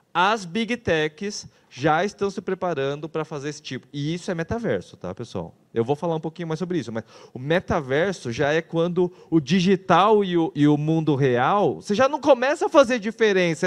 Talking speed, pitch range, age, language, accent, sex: 200 wpm, 140-220 Hz, 30-49, Portuguese, Brazilian, male